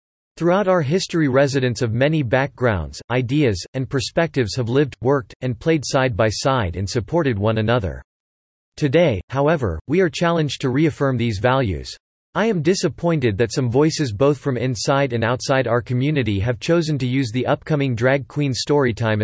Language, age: English, 40-59